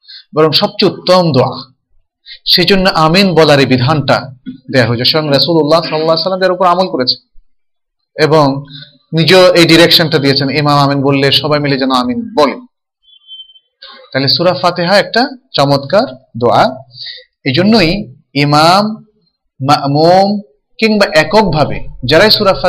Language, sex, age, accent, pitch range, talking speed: Bengali, male, 30-49, native, 130-185 Hz, 50 wpm